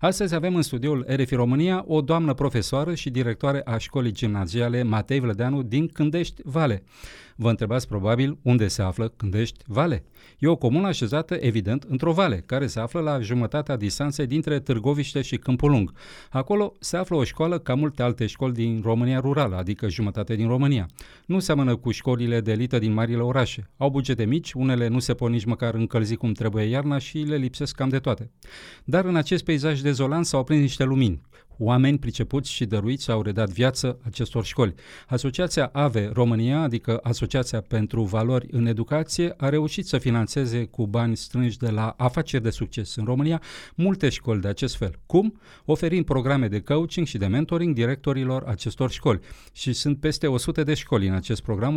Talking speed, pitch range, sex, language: 180 wpm, 115-145 Hz, male, Romanian